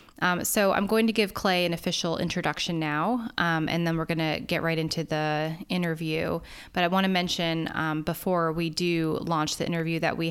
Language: English